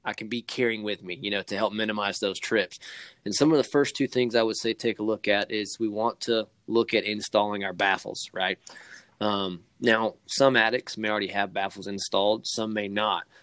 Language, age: English, 20-39